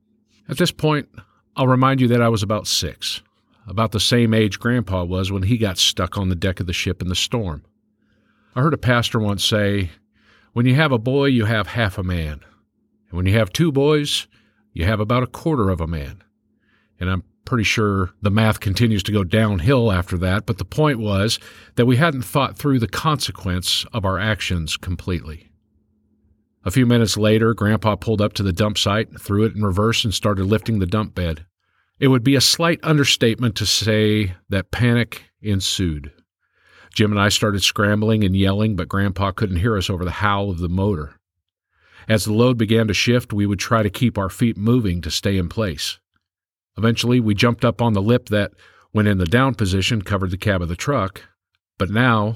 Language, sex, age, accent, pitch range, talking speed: English, male, 50-69, American, 95-115 Hz, 200 wpm